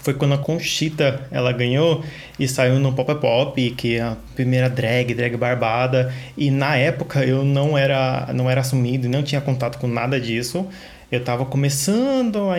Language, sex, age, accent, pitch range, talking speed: Portuguese, male, 20-39, Brazilian, 125-150 Hz, 185 wpm